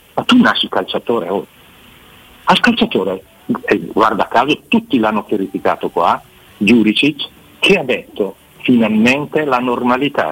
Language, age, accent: Italian, 50-69, native